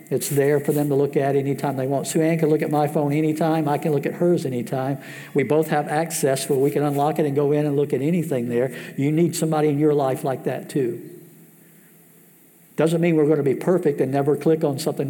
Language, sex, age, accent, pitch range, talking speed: English, male, 60-79, American, 150-175 Hz, 245 wpm